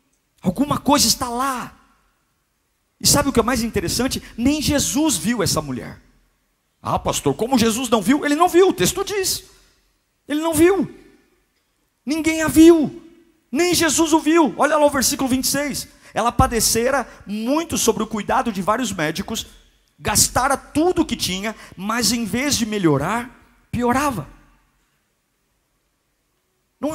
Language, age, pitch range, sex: Portuguese, 50-69, 210-255 Hz, male